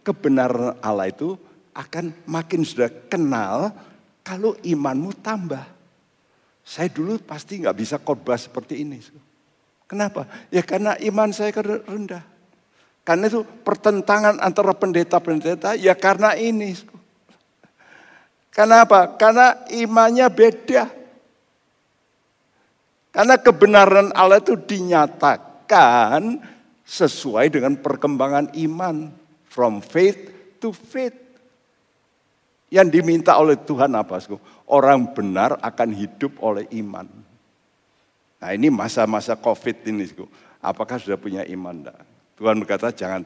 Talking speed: 100 wpm